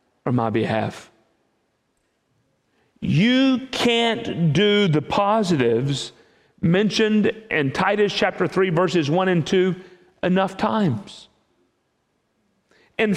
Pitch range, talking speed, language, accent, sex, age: 150-225 Hz, 90 wpm, English, American, male, 40-59